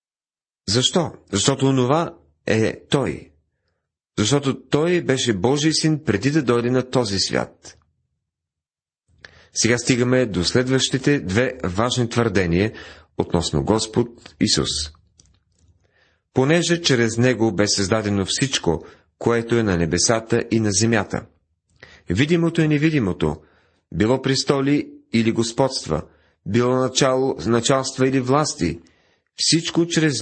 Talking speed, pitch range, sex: 105 wpm, 95-130 Hz, male